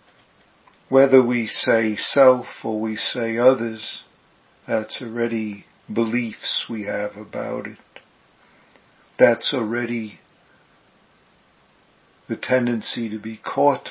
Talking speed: 95 wpm